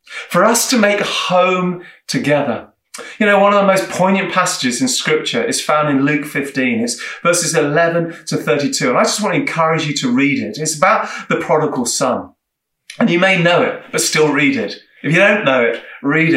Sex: male